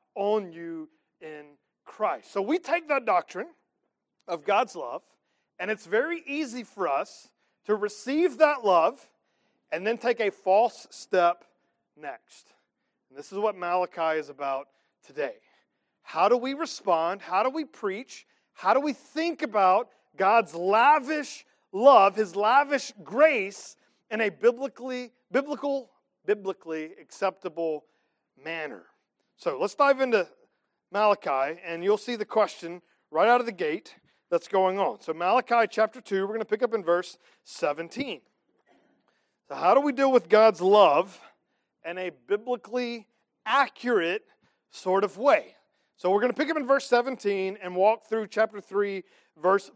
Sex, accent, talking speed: male, American, 150 wpm